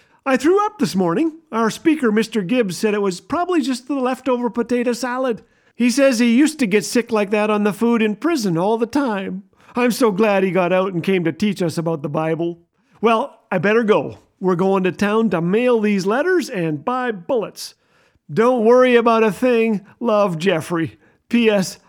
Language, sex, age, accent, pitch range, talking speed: English, male, 50-69, American, 185-235 Hz, 195 wpm